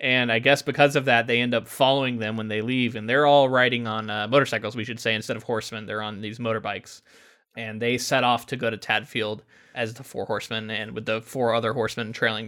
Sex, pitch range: male, 115-140 Hz